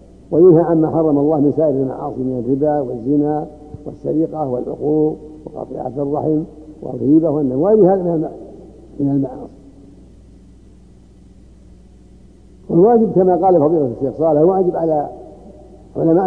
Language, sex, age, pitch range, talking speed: Arabic, male, 60-79, 140-165 Hz, 95 wpm